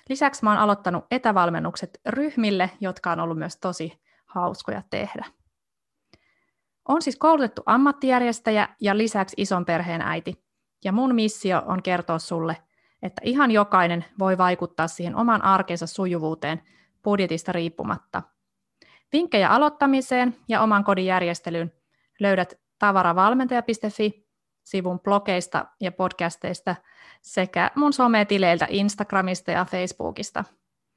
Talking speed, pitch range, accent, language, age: 105 wpm, 180-225 Hz, native, Finnish, 30-49